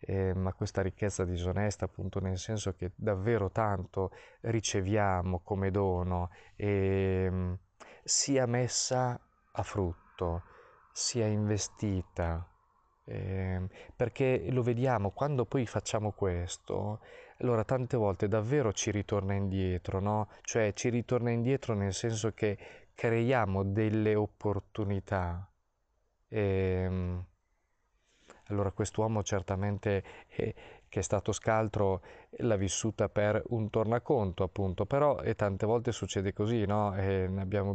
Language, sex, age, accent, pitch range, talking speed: Italian, male, 20-39, native, 95-110 Hz, 110 wpm